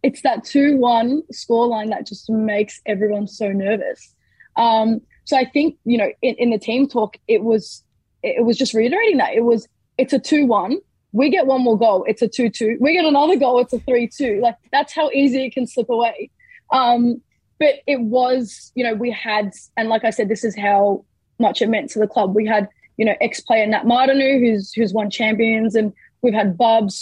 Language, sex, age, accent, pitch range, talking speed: English, female, 20-39, Australian, 215-255 Hz, 210 wpm